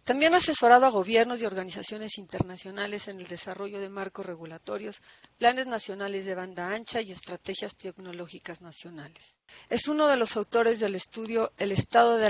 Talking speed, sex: 160 wpm, female